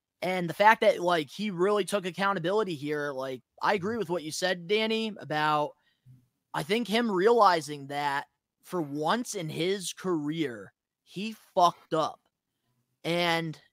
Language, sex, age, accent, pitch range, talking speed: English, male, 20-39, American, 150-205 Hz, 145 wpm